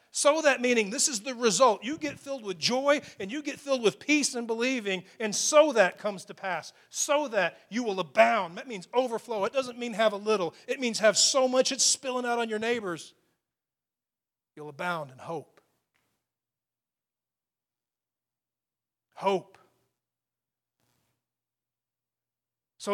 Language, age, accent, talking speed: English, 40-59, American, 150 wpm